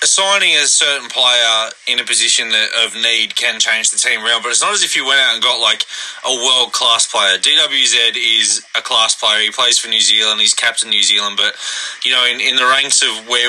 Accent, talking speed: Australian, 230 wpm